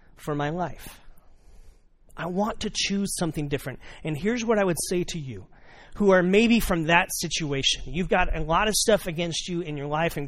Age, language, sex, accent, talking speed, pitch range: 30-49, English, male, American, 205 wpm, 145-195 Hz